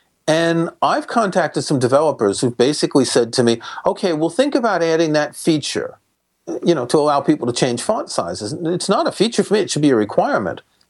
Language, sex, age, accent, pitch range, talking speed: English, male, 40-59, American, 130-165 Hz, 205 wpm